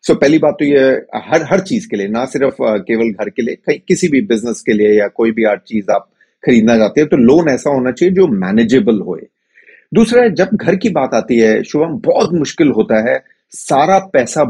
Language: Hindi